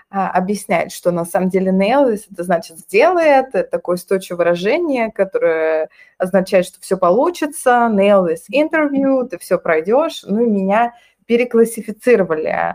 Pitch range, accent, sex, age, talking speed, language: 180-230 Hz, native, female, 20-39, 125 wpm, Russian